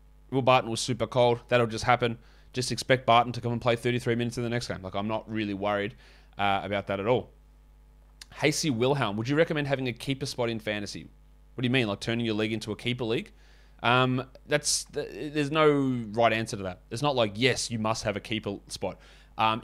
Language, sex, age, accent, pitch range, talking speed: English, male, 20-39, Australian, 105-130 Hz, 225 wpm